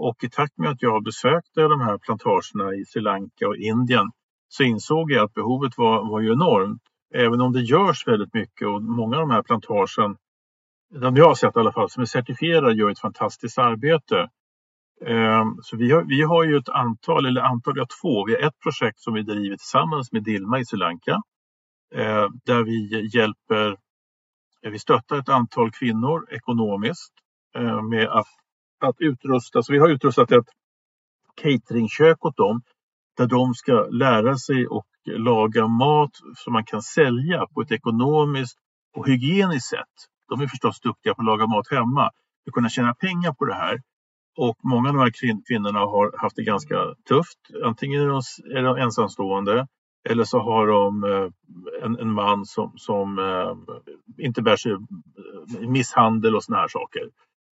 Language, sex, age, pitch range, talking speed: Swedish, male, 50-69, 110-135 Hz, 170 wpm